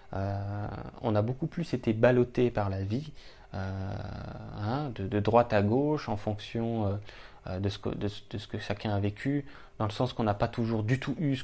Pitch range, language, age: 105-125 Hz, French, 20-39